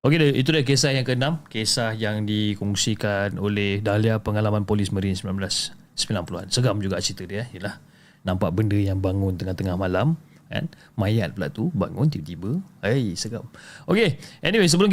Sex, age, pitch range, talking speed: male, 30-49, 100-135 Hz, 155 wpm